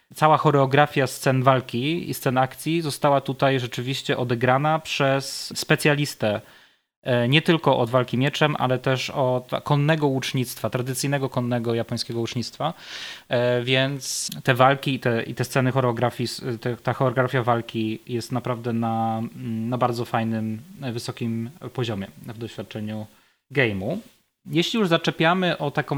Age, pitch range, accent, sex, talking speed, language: 20-39, 125-150 Hz, native, male, 125 wpm, Polish